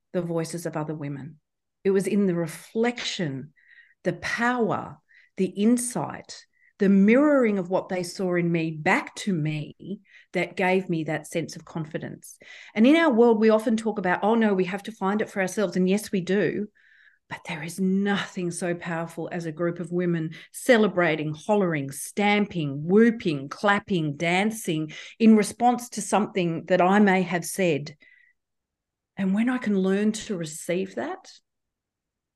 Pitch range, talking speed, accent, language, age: 165-205 Hz, 160 wpm, Australian, English, 40-59